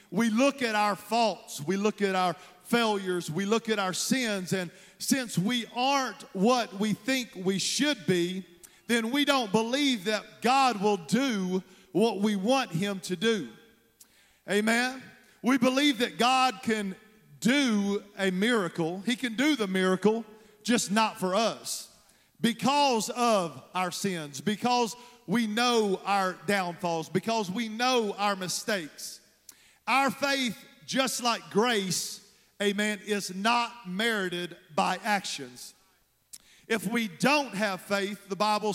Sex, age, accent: male, 40-59, American